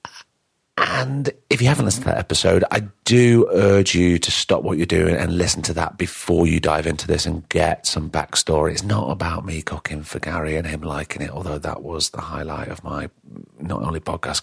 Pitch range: 80-100 Hz